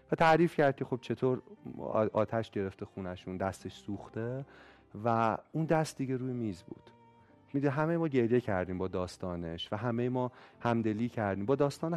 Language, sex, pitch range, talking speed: Persian, male, 105-145 Hz, 155 wpm